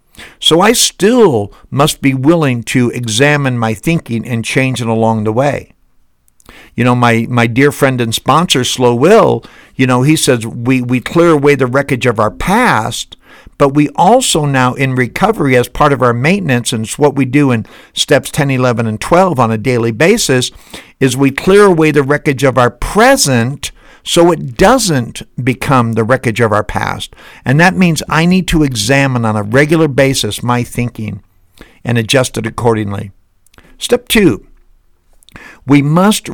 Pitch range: 115-150 Hz